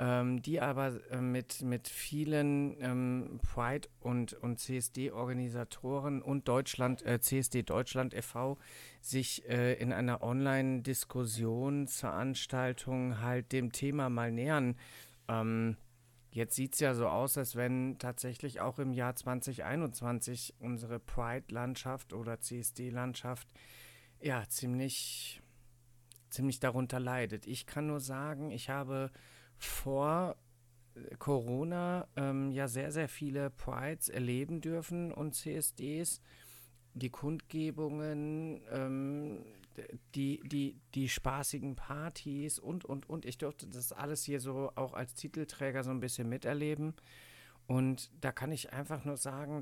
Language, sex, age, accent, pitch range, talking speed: German, male, 50-69, German, 125-140 Hz, 120 wpm